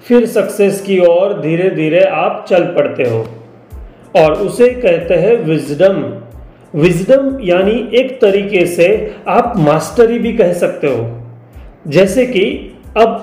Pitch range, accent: 175-245 Hz, native